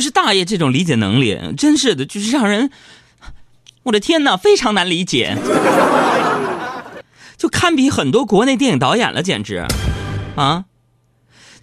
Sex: male